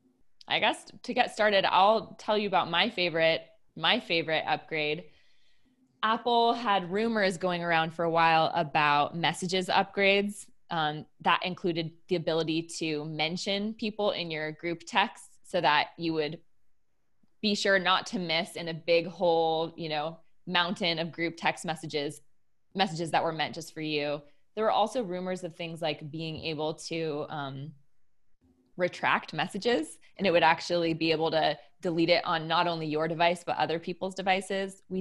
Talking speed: 165 wpm